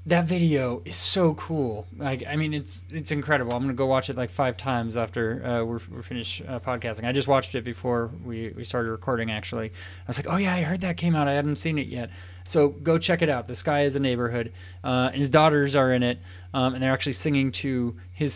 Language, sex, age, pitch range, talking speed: English, male, 20-39, 120-155 Hz, 245 wpm